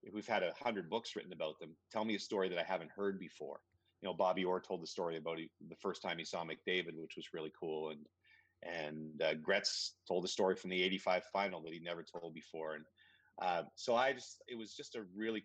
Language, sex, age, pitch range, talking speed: English, male, 30-49, 85-100 Hz, 240 wpm